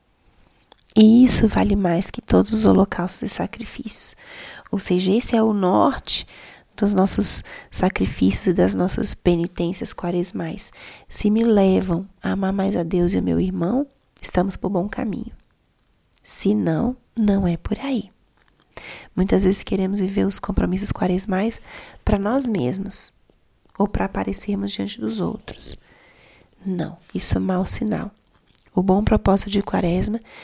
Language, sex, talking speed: Portuguese, female, 145 wpm